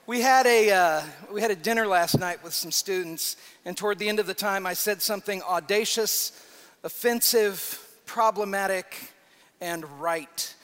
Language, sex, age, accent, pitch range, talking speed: English, male, 40-59, American, 160-210 Hz, 160 wpm